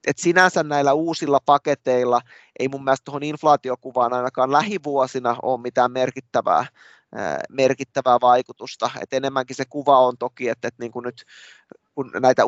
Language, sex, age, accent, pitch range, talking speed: Finnish, male, 20-39, native, 125-140 Hz, 140 wpm